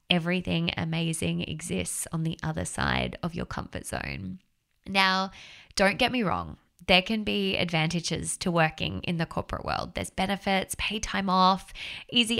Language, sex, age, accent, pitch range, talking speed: English, female, 20-39, Australian, 155-180 Hz, 155 wpm